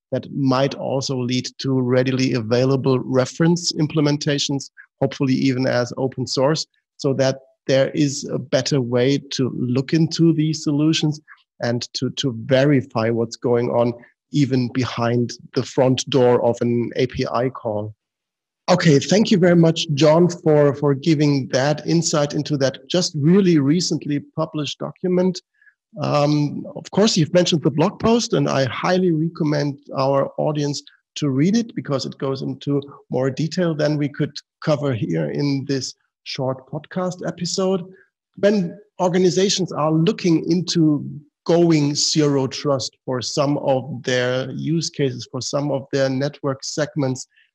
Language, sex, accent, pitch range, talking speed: English, male, German, 130-165 Hz, 145 wpm